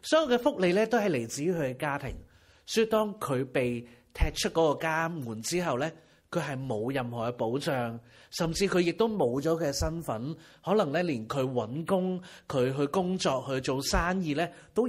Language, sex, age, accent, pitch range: Chinese, male, 30-49, native, 125-180 Hz